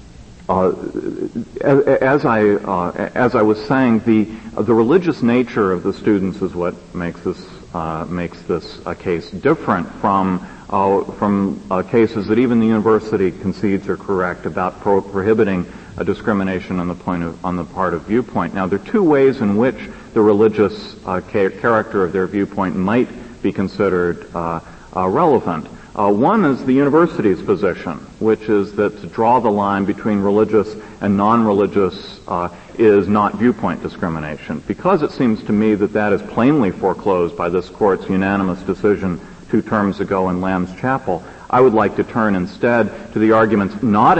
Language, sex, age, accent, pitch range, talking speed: English, male, 50-69, American, 95-110 Hz, 170 wpm